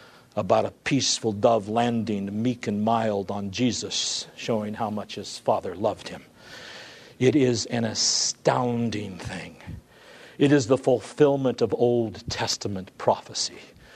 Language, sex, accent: English, male, American